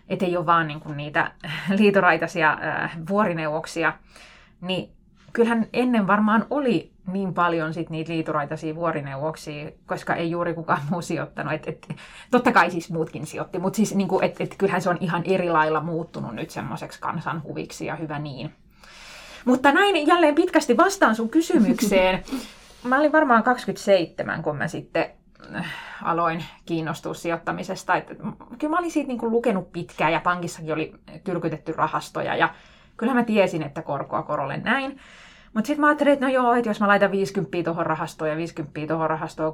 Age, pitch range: 20-39, 160-205 Hz